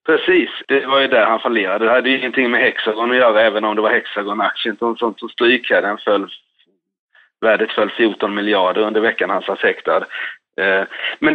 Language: Swedish